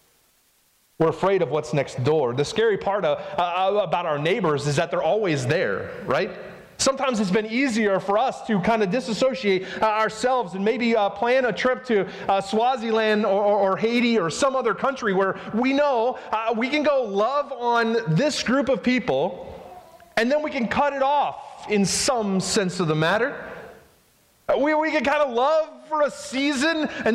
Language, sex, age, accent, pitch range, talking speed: English, male, 30-49, American, 175-265 Hz, 190 wpm